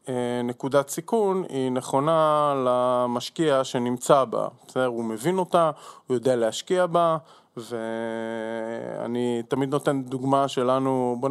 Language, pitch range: Hebrew, 115-140 Hz